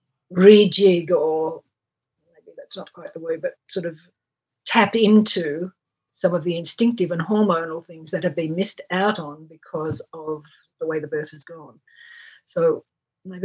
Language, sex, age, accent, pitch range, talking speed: English, female, 50-69, Australian, 170-220 Hz, 160 wpm